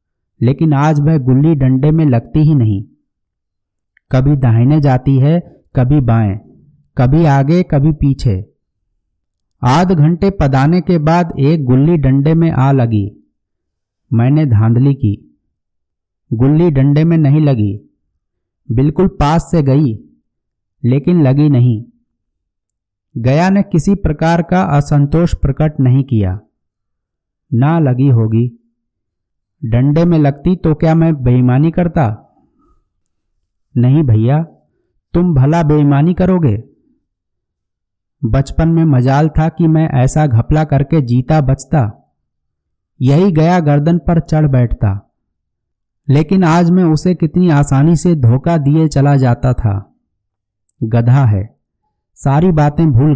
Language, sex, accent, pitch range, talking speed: Hindi, male, native, 105-155 Hz, 120 wpm